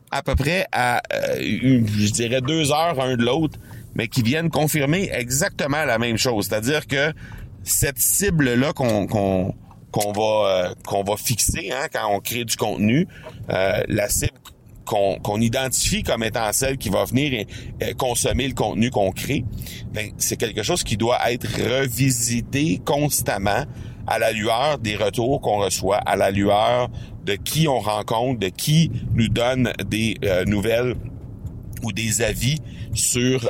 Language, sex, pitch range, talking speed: French, male, 100-130 Hz, 160 wpm